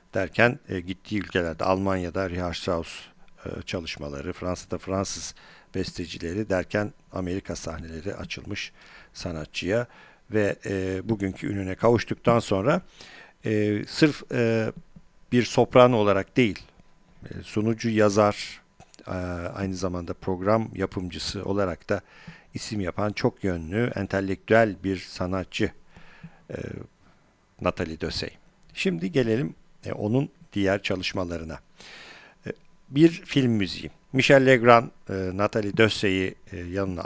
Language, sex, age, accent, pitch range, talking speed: Turkish, male, 50-69, native, 90-110 Hz, 85 wpm